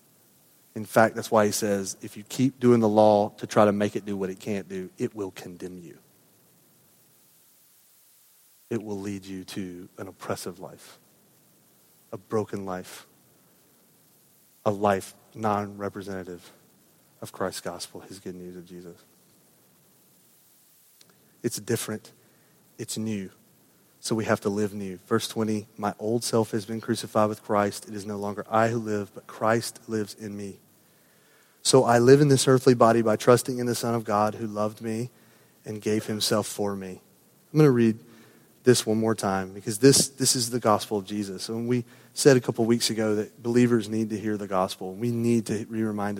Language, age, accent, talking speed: English, 30-49, American, 180 wpm